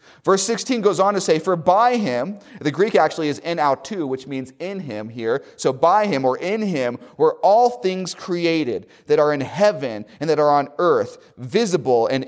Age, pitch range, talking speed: 30-49, 145-205 Hz, 205 wpm